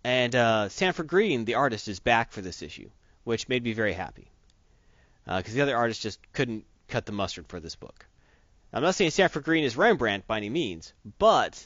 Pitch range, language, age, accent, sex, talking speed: 100-130 Hz, English, 30-49, American, male, 205 wpm